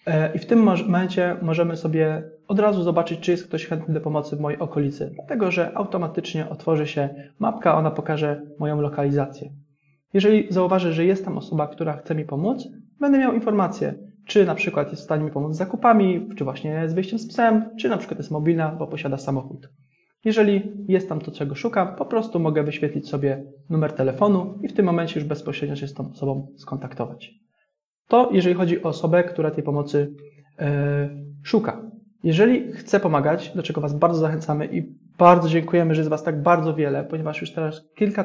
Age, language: 20-39, Polish